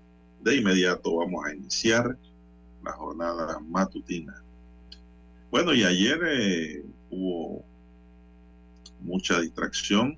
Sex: male